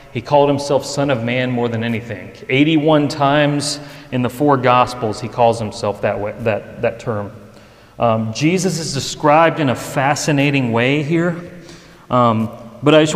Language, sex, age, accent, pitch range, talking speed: English, male, 30-49, American, 125-170 Hz, 165 wpm